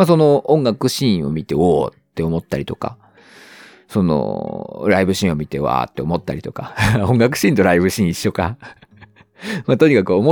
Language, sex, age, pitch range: Japanese, male, 40-59, 95-150 Hz